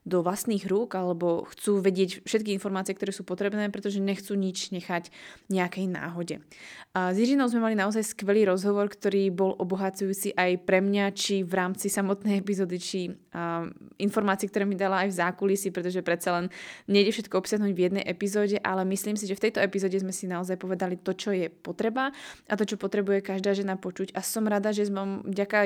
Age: 20-39